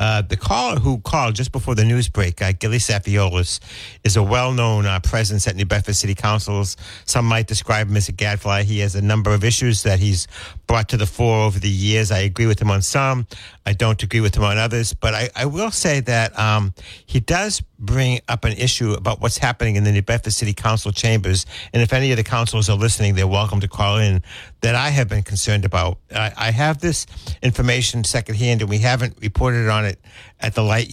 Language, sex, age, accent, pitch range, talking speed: English, male, 60-79, American, 100-120 Hz, 220 wpm